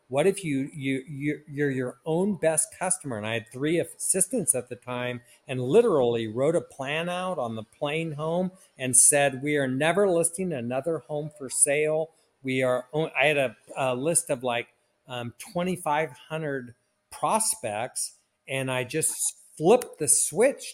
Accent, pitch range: American, 130-160 Hz